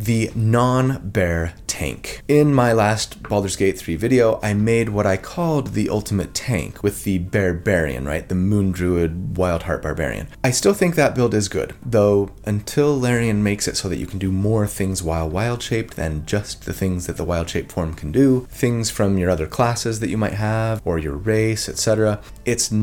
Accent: American